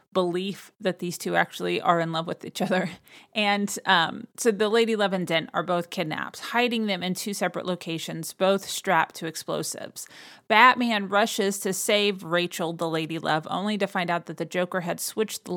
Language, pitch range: English, 175-210 Hz